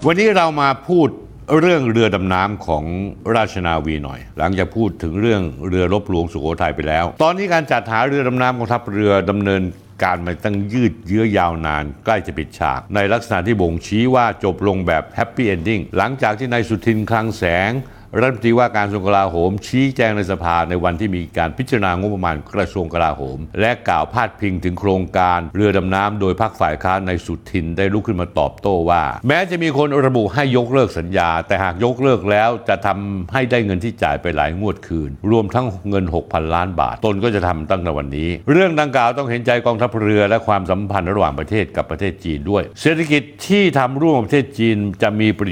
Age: 60-79